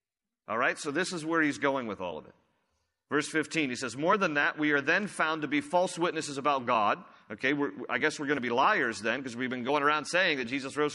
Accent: American